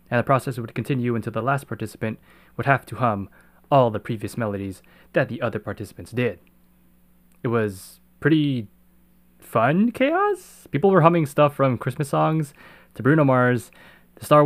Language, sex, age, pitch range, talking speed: English, male, 20-39, 110-145 Hz, 160 wpm